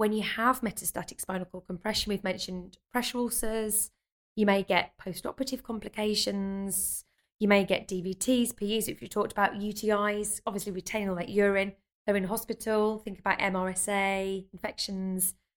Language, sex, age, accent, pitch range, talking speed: English, female, 20-39, British, 185-230 Hz, 150 wpm